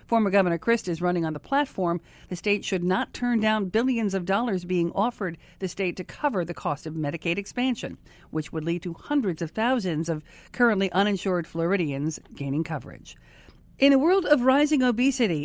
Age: 50-69